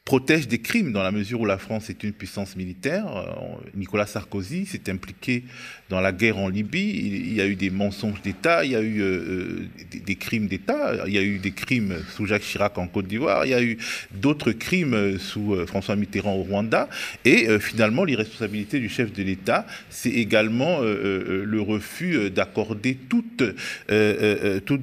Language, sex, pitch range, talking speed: French, male, 100-125 Hz, 195 wpm